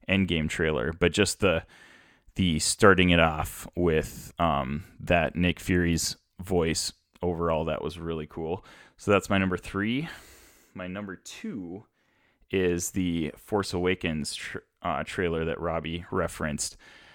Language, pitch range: English, 85-105 Hz